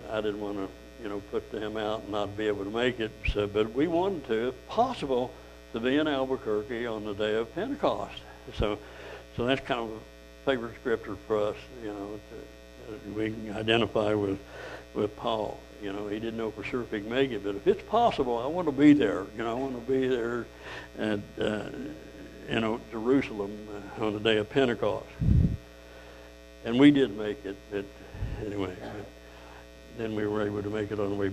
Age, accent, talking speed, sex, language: 60-79, American, 205 wpm, male, English